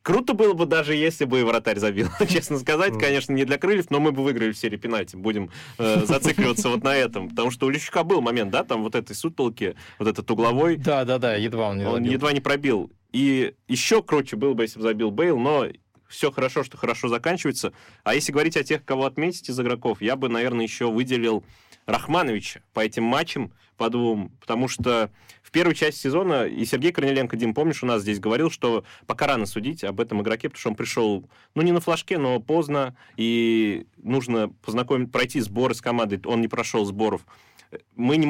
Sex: male